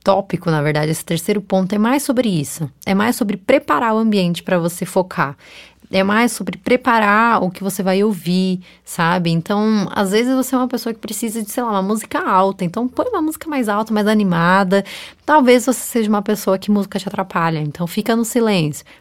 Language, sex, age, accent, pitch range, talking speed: Portuguese, female, 20-39, Brazilian, 180-220 Hz, 205 wpm